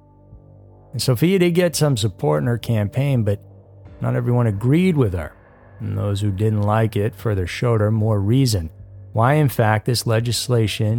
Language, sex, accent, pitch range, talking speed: English, male, American, 100-125 Hz, 170 wpm